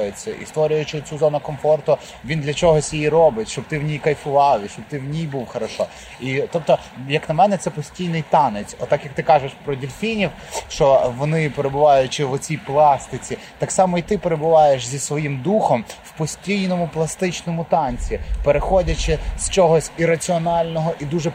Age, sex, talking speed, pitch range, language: 30-49, male, 165 wpm, 140-165 Hz, Ukrainian